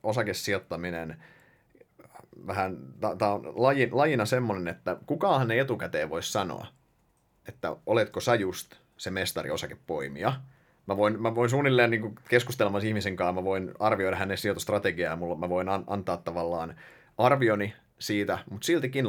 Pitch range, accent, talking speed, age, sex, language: 100-130 Hz, native, 135 wpm, 30-49, male, Finnish